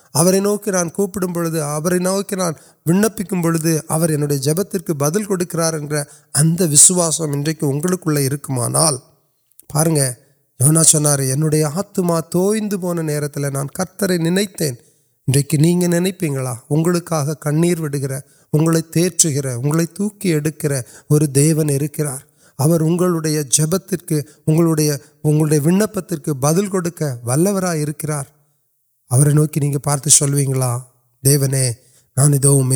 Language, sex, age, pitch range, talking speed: Urdu, male, 30-49, 140-175 Hz, 55 wpm